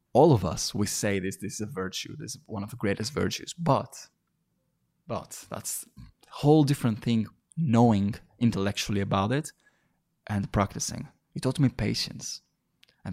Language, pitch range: English, 105-130 Hz